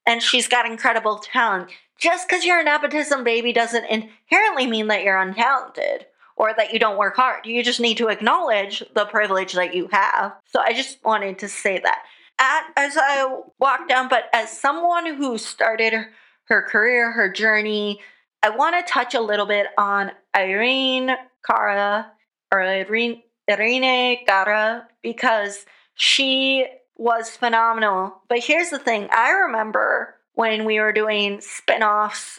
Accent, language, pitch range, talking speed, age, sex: American, English, 210-255 Hz, 155 wpm, 30-49, female